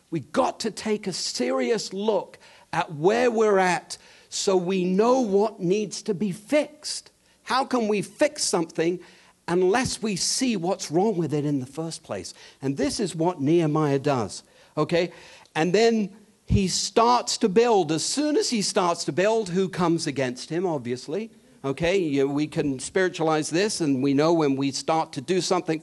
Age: 50-69